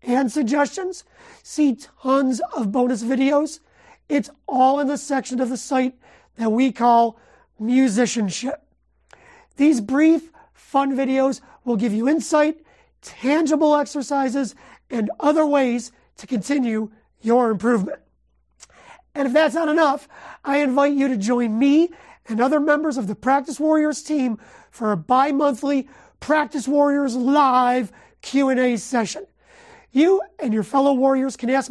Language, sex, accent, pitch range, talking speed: English, male, American, 245-290 Hz, 130 wpm